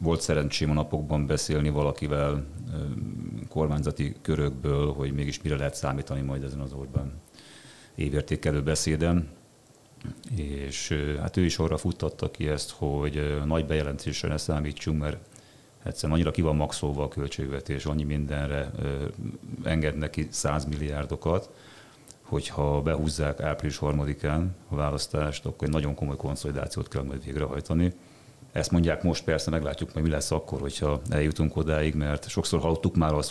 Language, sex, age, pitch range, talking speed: Hungarian, male, 30-49, 75-80 Hz, 135 wpm